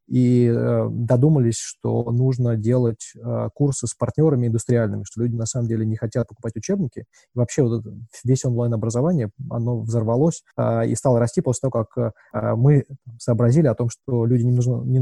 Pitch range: 115-135 Hz